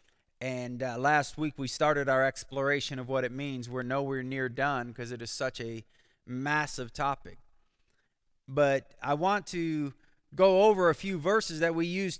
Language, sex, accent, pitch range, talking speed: English, male, American, 150-200 Hz, 170 wpm